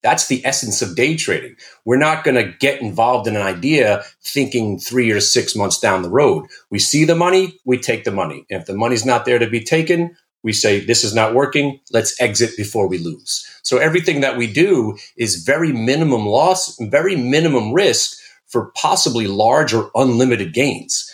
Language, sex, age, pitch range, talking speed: English, male, 30-49, 110-160 Hz, 195 wpm